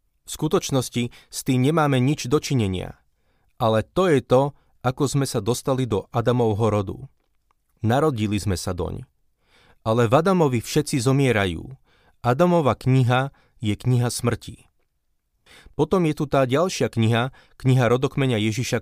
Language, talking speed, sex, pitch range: Slovak, 130 wpm, male, 105-135 Hz